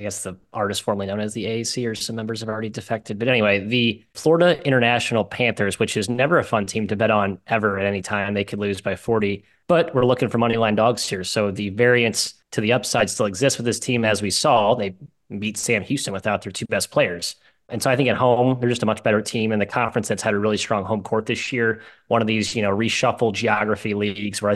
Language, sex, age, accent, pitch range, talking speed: English, male, 30-49, American, 105-125 Hz, 255 wpm